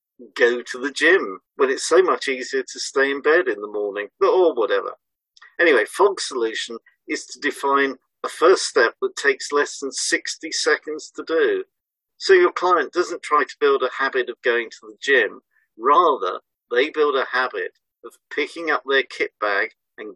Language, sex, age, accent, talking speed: English, male, 50-69, British, 180 wpm